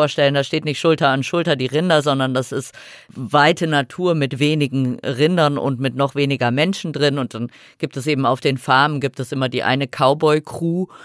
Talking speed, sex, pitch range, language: 200 wpm, female, 135-165 Hz, German